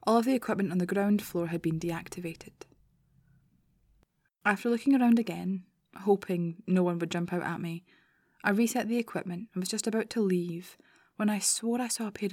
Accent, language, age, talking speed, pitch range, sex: British, English, 20-39, 195 wpm, 175-205 Hz, female